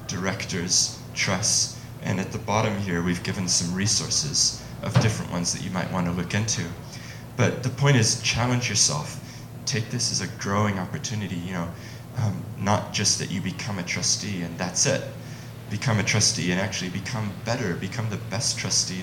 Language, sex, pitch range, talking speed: English, male, 90-120 Hz, 180 wpm